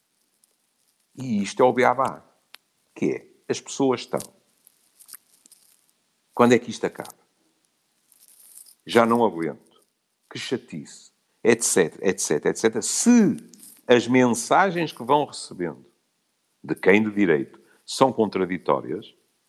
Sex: male